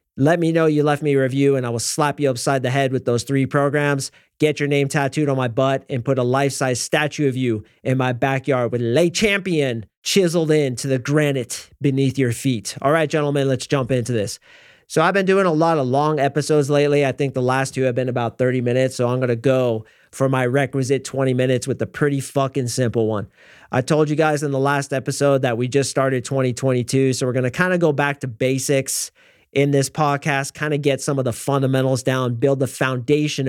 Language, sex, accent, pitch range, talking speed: English, male, American, 130-155 Hz, 230 wpm